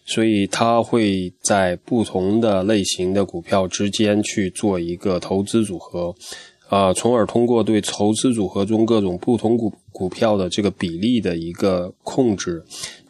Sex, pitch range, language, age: male, 95-115 Hz, Chinese, 20-39